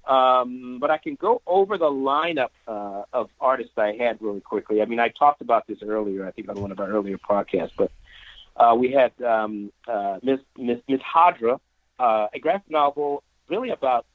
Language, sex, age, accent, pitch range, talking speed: English, male, 40-59, American, 105-150 Hz, 195 wpm